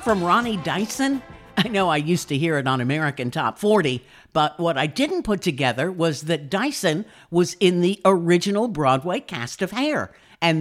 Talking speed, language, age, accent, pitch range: 180 wpm, English, 50-69, American, 135-180 Hz